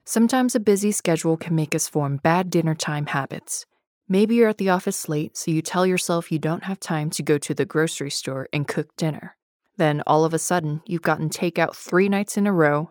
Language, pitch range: English, 150-185 Hz